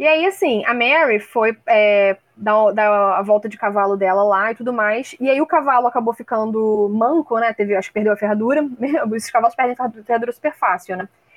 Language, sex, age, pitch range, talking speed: Portuguese, female, 10-29, 200-260 Hz, 210 wpm